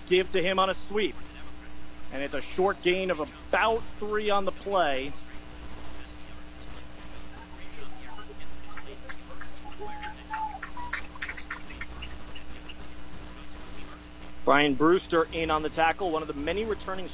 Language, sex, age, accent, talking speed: English, male, 40-59, American, 100 wpm